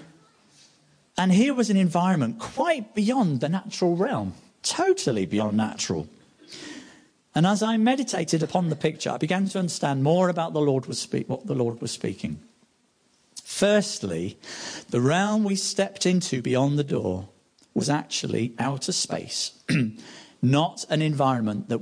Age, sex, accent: 50-69, male, British